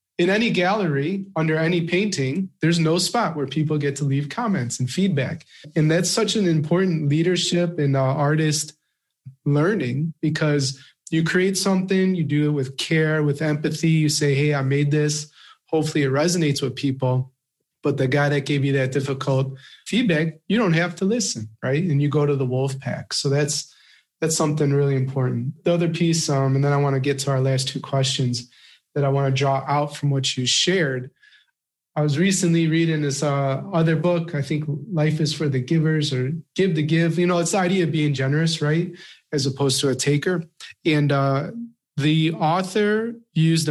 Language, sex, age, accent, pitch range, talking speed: English, male, 30-49, American, 140-165 Hz, 190 wpm